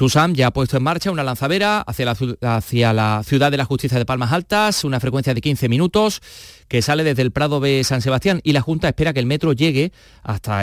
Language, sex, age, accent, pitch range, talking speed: Spanish, male, 30-49, Spanish, 125-160 Hz, 230 wpm